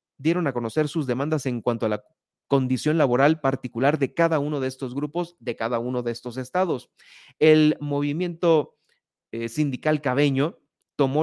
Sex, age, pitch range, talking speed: male, 30-49, 120-155 Hz, 160 wpm